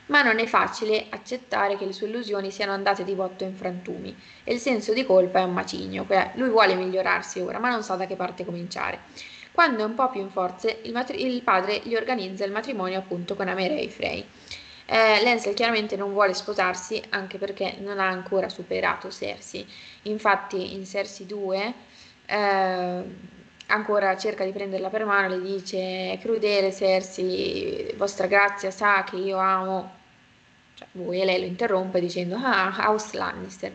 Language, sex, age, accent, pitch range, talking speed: Italian, female, 20-39, native, 190-215 Hz, 175 wpm